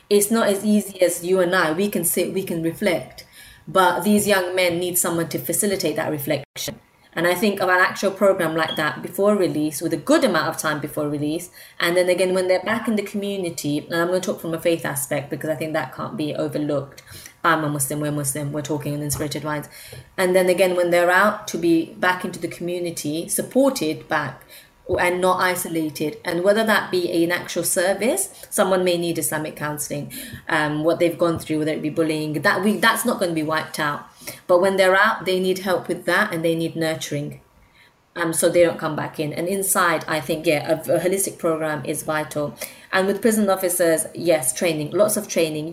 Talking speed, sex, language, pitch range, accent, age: 215 wpm, female, English, 155-185 Hz, British, 20-39